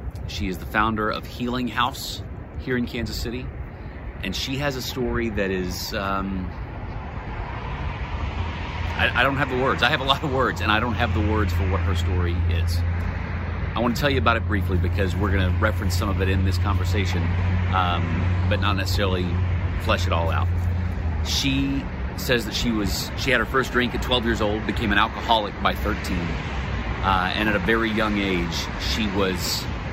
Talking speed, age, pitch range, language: 195 wpm, 30-49, 85-105 Hz, English